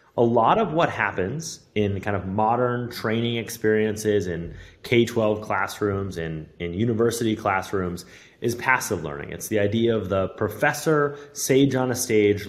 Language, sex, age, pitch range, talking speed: English, male, 30-49, 95-120 Hz, 150 wpm